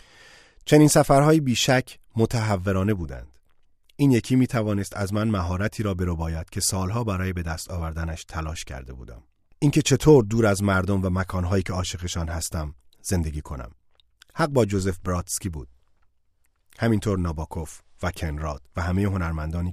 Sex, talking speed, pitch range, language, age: male, 145 wpm, 85-115 Hz, Persian, 30-49